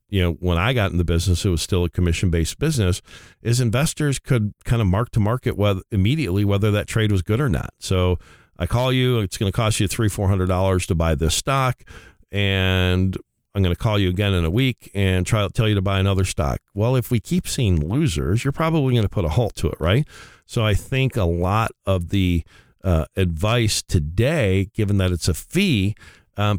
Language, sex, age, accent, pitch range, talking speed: English, male, 50-69, American, 90-115 Hz, 215 wpm